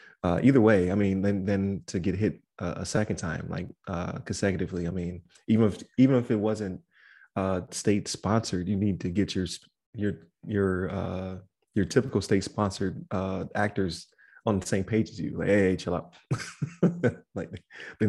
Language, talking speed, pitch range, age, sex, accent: English, 175 wpm, 90-100 Hz, 20-39, male, American